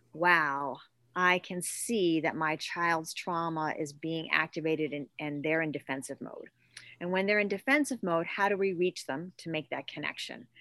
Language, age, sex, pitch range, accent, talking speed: English, 40-59, female, 160-215 Hz, American, 180 wpm